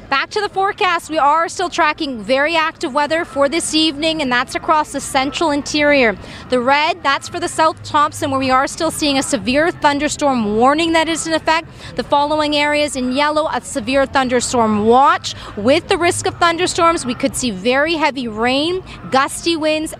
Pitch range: 265-325 Hz